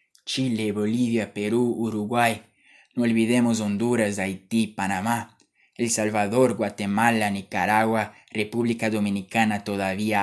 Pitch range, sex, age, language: 105-120 Hz, male, 20-39, Spanish